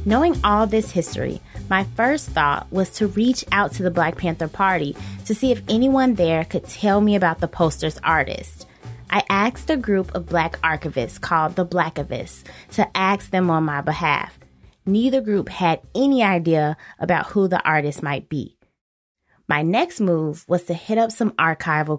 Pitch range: 155-200 Hz